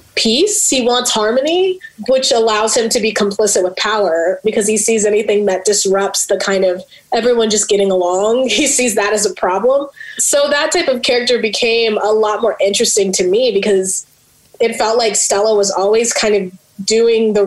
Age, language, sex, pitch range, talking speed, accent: 20-39, English, female, 205-255 Hz, 185 wpm, American